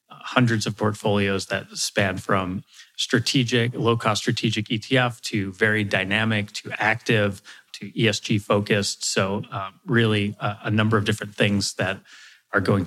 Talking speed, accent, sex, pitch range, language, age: 145 wpm, American, male, 100-115 Hz, English, 30-49